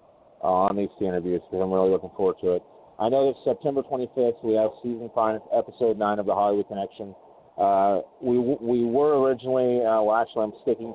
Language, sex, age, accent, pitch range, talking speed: English, male, 30-49, American, 95-115 Hz, 190 wpm